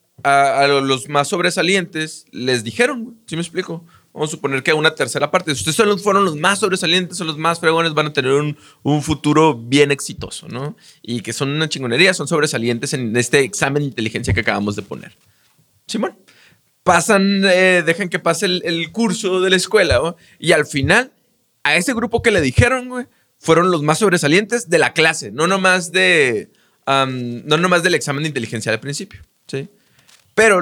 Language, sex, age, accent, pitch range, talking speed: Spanish, male, 20-39, Mexican, 135-185 Hz, 200 wpm